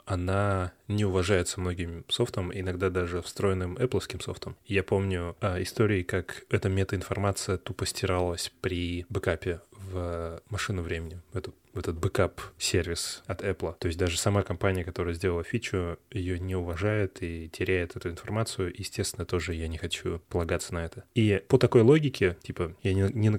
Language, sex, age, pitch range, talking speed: Russian, male, 20-39, 90-105 Hz, 155 wpm